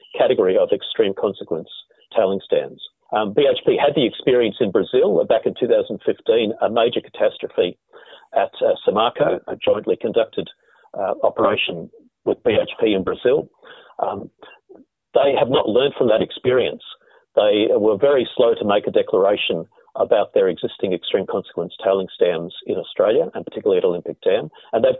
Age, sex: 50-69, male